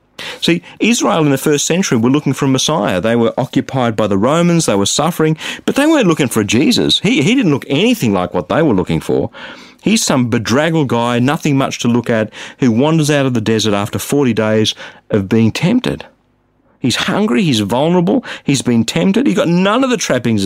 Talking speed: 210 wpm